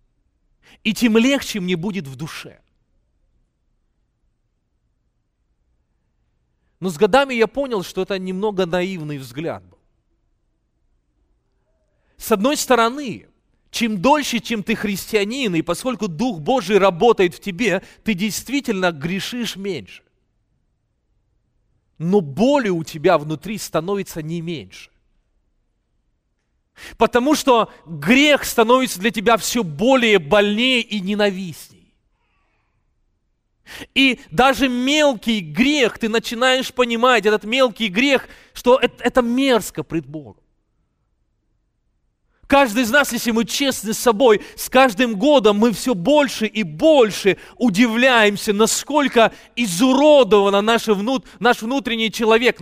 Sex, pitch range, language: male, 190-255 Hz, English